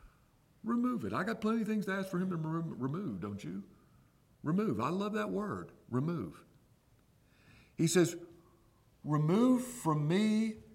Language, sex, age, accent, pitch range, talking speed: English, male, 50-69, American, 105-175 Hz, 145 wpm